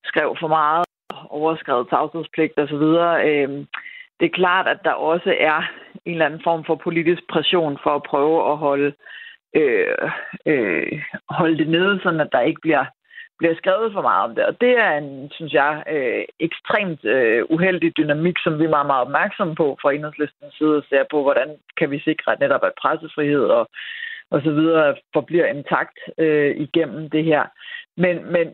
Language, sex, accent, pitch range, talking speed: Danish, female, native, 150-175 Hz, 175 wpm